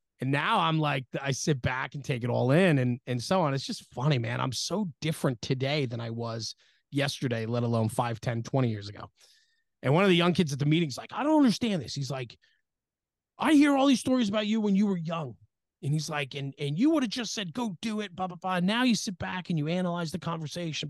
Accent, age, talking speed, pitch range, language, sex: American, 30-49, 250 wpm, 130-185 Hz, English, male